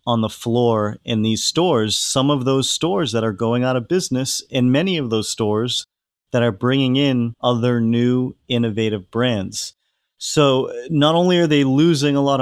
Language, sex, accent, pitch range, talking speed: English, male, American, 115-130 Hz, 180 wpm